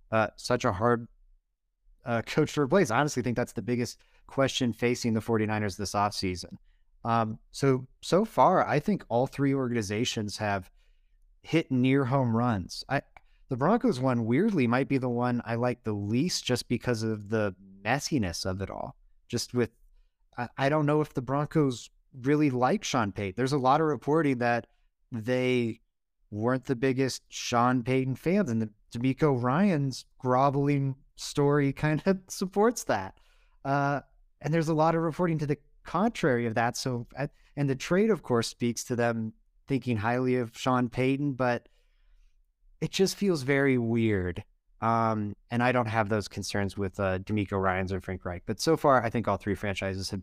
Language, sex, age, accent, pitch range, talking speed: English, male, 30-49, American, 105-140 Hz, 170 wpm